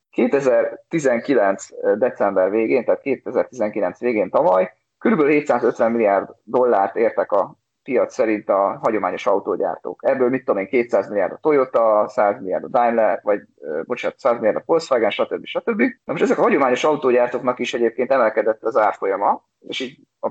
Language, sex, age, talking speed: Hungarian, male, 30-49, 155 wpm